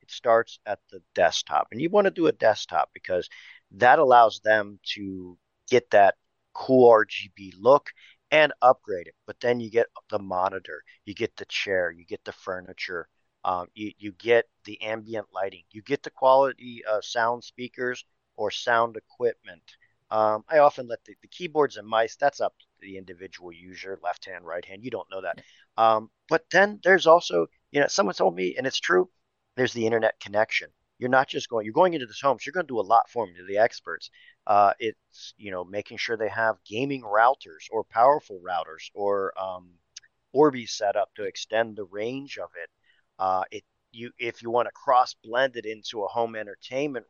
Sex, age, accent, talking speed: male, 40-59, American, 195 wpm